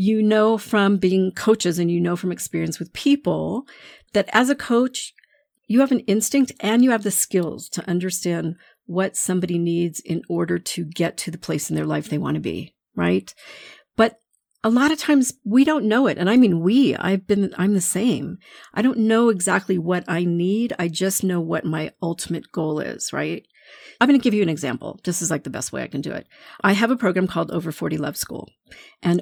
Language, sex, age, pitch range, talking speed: English, female, 50-69, 175-235 Hz, 220 wpm